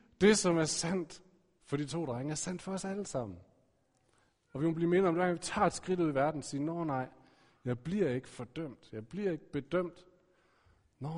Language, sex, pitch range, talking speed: Danish, male, 120-175 Hz, 225 wpm